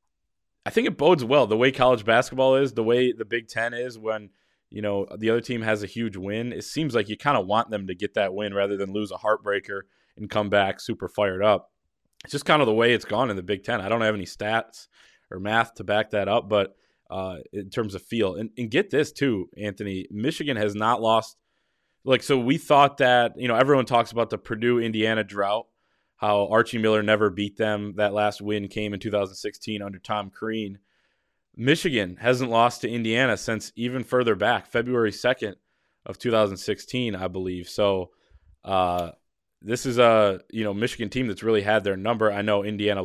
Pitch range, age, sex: 100-115 Hz, 20-39, male